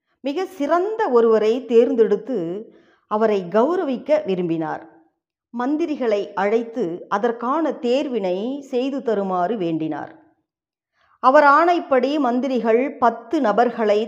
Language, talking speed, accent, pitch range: Tamil, 80 wpm, native, 205-290 Hz